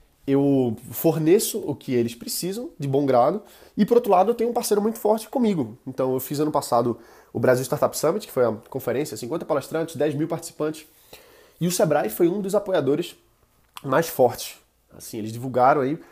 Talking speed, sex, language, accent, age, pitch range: 180 wpm, male, Portuguese, Brazilian, 20-39, 125-180 Hz